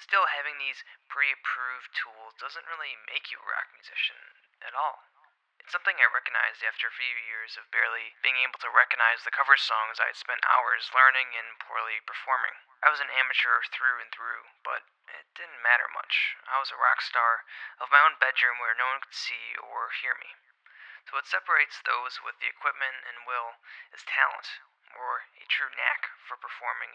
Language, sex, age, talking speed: English, male, 20-39, 190 wpm